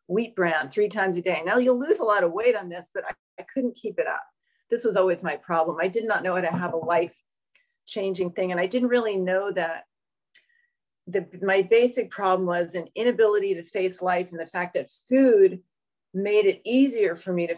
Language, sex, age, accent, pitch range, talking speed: English, female, 40-59, American, 170-220 Hz, 220 wpm